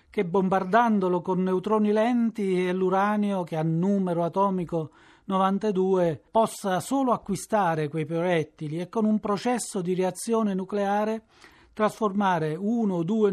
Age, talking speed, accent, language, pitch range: 40-59, 125 wpm, native, Italian, 160-200 Hz